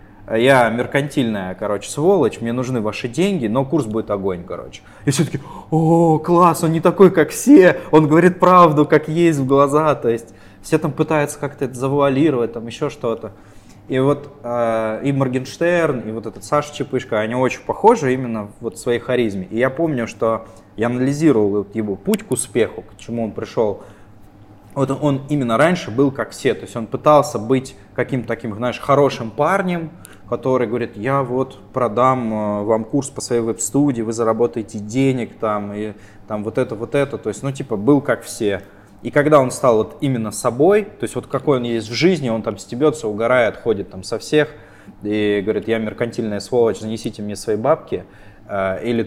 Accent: native